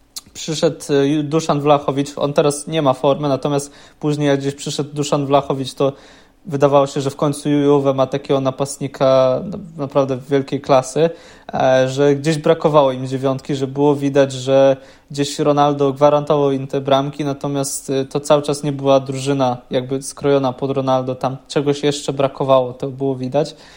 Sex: male